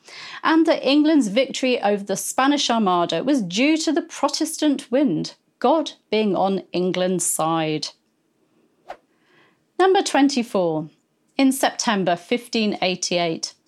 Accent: British